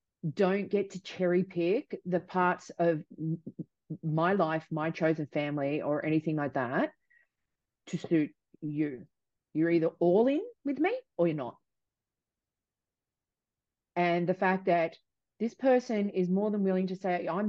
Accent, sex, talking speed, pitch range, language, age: Australian, female, 145 wpm, 165-200 Hz, English, 30-49